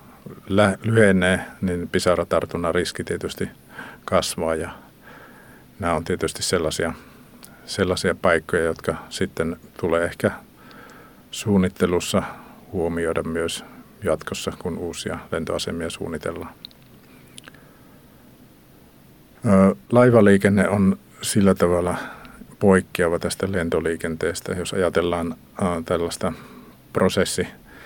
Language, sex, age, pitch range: Finnish, male, 50-69, 85-100 Hz